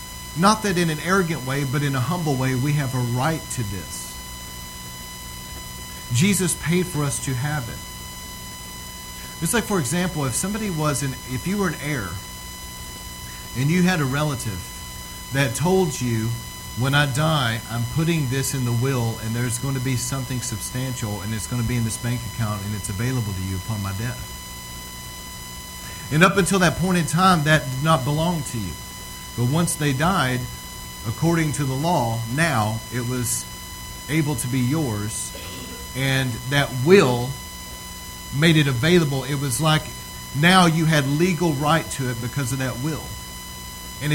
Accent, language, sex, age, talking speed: American, English, male, 40-59, 170 wpm